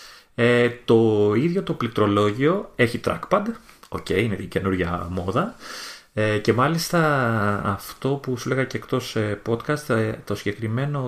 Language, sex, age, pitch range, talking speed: Greek, male, 30-49, 100-130 Hz, 120 wpm